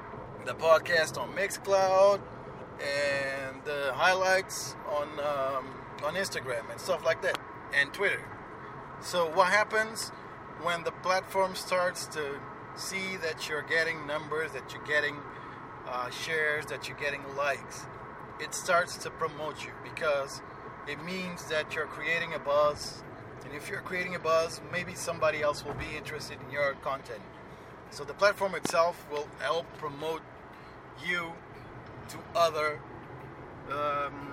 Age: 30-49